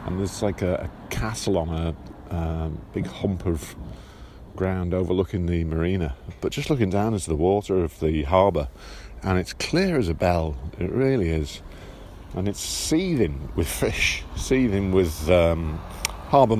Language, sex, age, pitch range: English, male, 50-69, 75-110 Hz